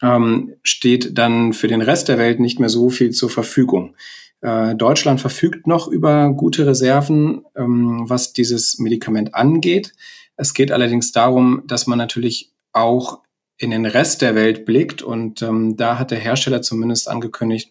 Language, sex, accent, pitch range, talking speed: German, male, German, 110-130 Hz, 165 wpm